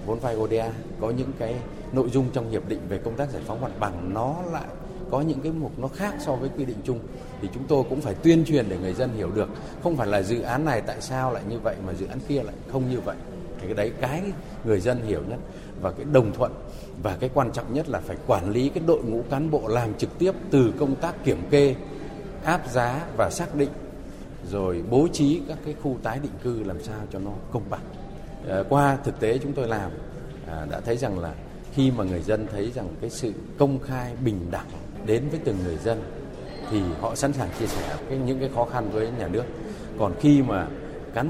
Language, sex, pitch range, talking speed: Vietnamese, male, 100-140 Hz, 230 wpm